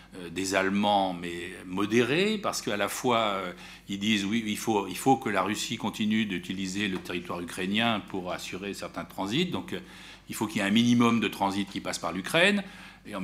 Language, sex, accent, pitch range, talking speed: French, male, French, 95-135 Hz, 195 wpm